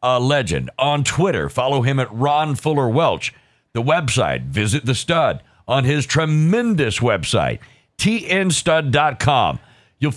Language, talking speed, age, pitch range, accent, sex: English, 125 wpm, 50-69, 125-180 Hz, American, male